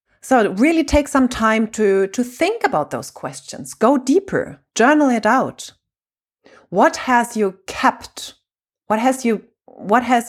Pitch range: 190-245 Hz